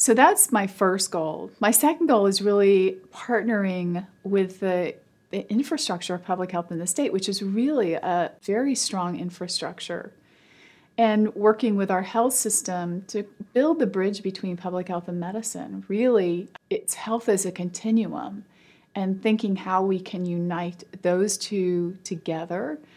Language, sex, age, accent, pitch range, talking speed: English, female, 30-49, American, 175-205 Hz, 150 wpm